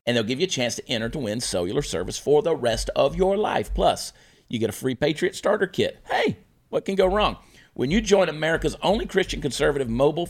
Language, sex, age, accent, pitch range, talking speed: English, male, 40-59, American, 110-145 Hz, 225 wpm